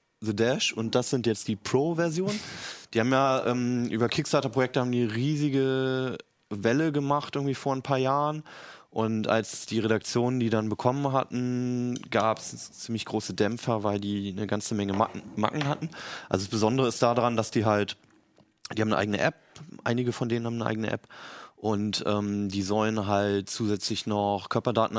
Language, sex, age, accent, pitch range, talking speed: German, male, 20-39, German, 105-125 Hz, 175 wpm